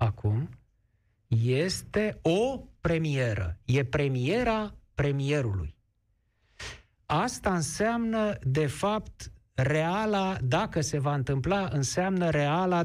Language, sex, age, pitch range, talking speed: Romanian, male, 50-69, 130-175 Hz, 85 wpm